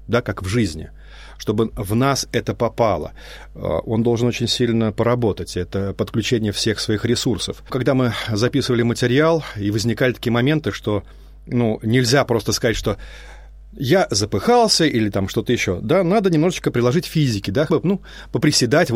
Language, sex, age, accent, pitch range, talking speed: Russian, male, 30-49, native, 105-145 Hz, 150 wpm